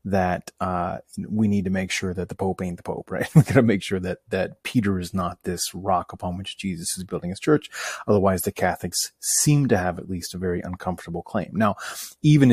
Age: 30-49